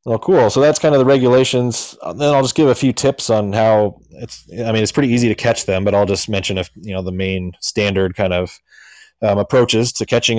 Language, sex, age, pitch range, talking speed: English, male, 20-39, 95-110 Hz, 245 wpm